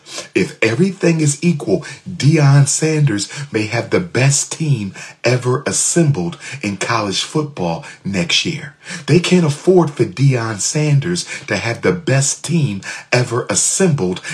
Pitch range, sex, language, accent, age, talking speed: 120-165 Hz, male, English, American, 40-59, 130 wpm